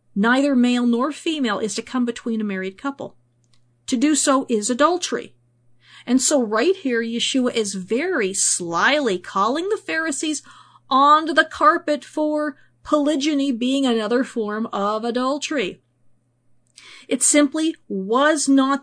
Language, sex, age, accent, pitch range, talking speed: English, female, 50-69, American, 205-295 Hz, 130 wpm